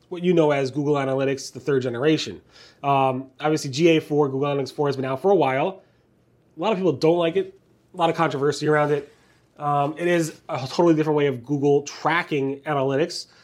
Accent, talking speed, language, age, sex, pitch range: American, 200 wpm, English, 30-49, male, 130-160 Hz